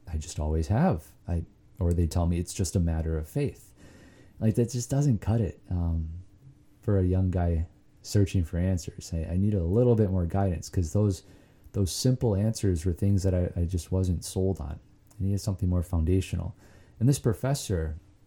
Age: 30-49